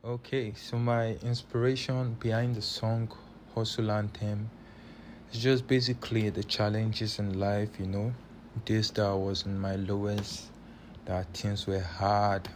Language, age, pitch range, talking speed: English, 20-39, 100-110 Hz, 145 wpm